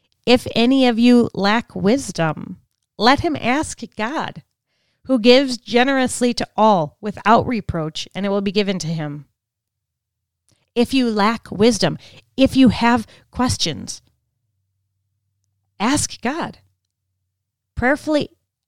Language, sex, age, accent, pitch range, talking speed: English, female, 30-49, American, 155-230 Hz, 110 wpm